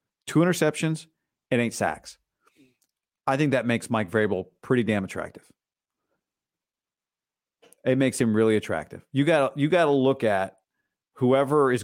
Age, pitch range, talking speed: 40-59, 110-140 Hz, 140 wpm